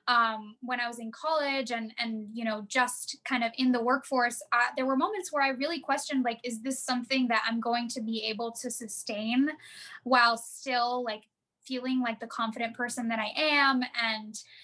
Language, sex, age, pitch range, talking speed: English, female, 10-29, 230-265 Hz, 195 wpm